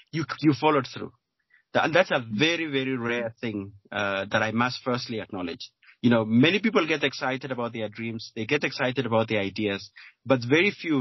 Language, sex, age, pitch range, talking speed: English, male, 30-49, 120-155 Hz, 190 wpm